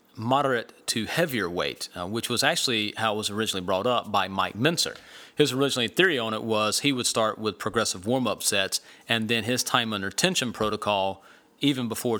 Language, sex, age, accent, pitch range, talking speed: English, male, 30-49, American, 110-140 Hz, 190 wpm